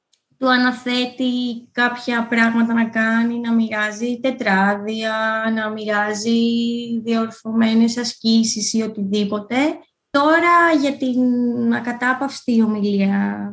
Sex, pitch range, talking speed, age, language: female, 220-265 Hz, 90 wpm, 20-39, Greek